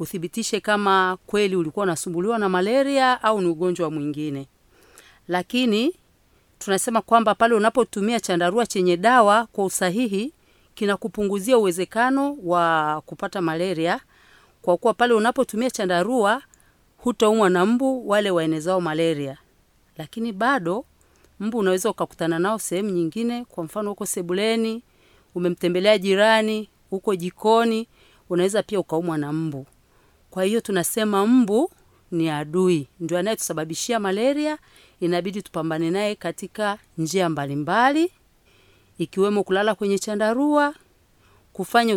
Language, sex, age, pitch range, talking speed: Swahili, female, 40-59, 175-225 Hz, 115 wpm